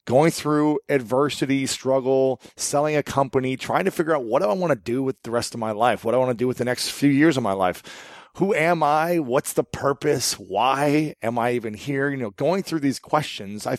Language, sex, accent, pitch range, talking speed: English, male, American, 115-145 Hz, 240 wpm